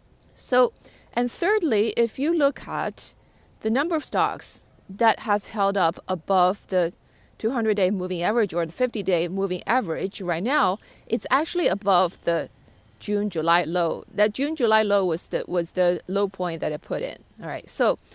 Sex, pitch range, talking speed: female, 185-265 Hz, 160 wpm